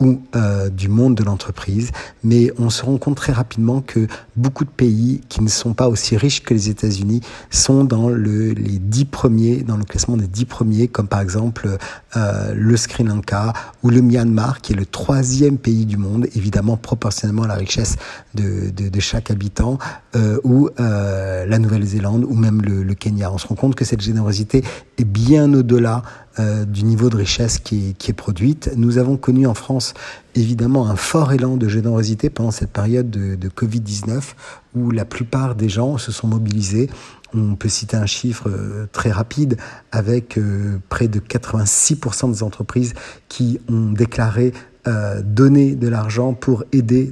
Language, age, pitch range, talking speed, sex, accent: Italian, 50-69, 105-125 Hz, 180 wpm, male, French